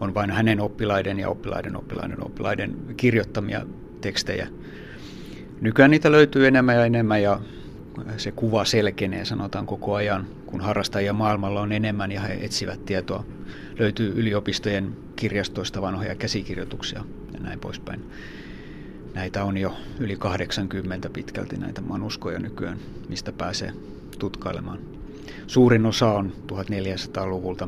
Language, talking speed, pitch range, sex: Finnish, 120 wpm, 95-110 Hz, male